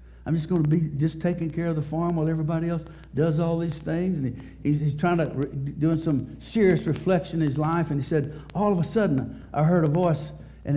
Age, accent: 60-79, American